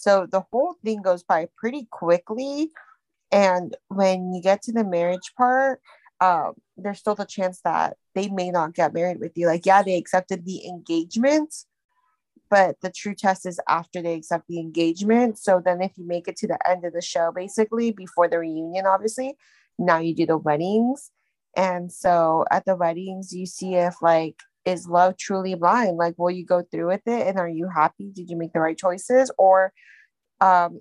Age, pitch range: 20-39, 170-215 Hz